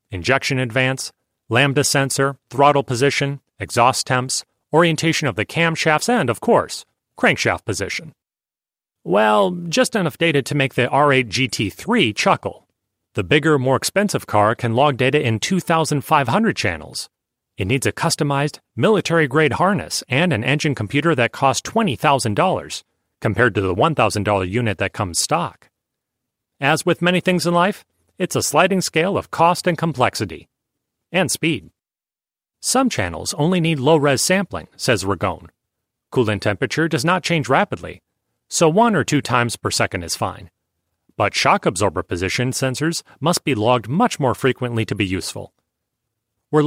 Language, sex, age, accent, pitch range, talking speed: English, male, 40-59, American, 115-160 Hz, 145 wpm